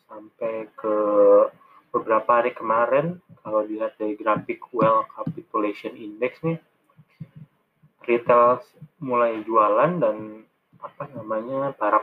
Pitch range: 110-160 Hz